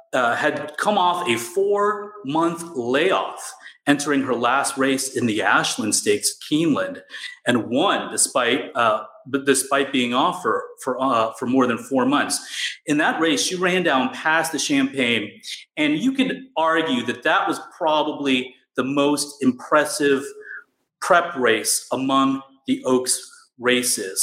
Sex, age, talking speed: male, 30-49, 145 wpm